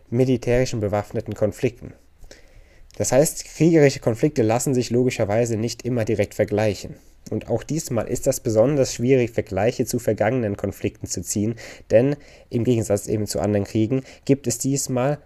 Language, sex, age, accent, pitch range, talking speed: German, male, 20-39, German, 110-135 Hz, 145 wpm